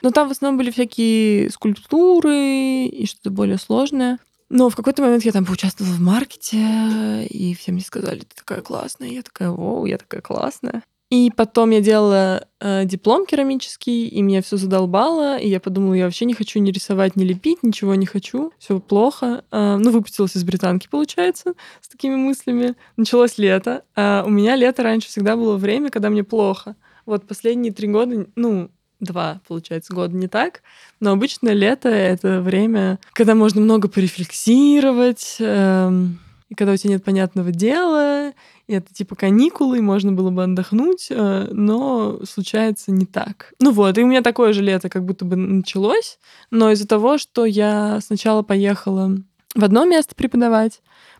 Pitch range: 195-245 Hz